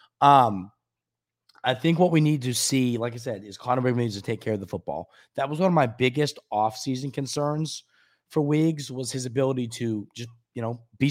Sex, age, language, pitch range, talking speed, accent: male, 20-39, English, 110-140 Hz, 210 wpm, American